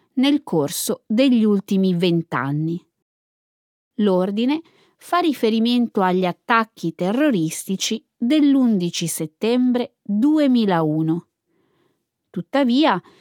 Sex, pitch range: female, 180-270 Hz